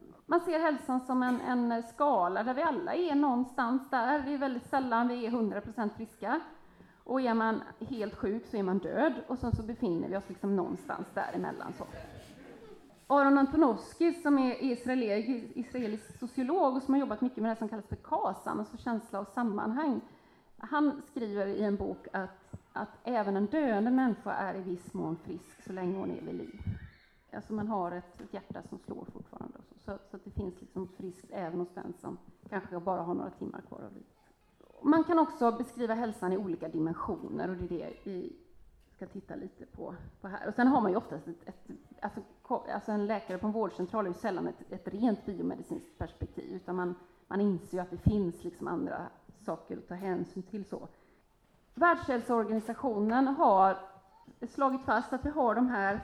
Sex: female